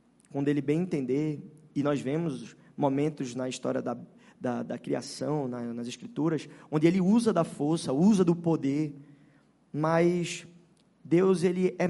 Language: Portuguese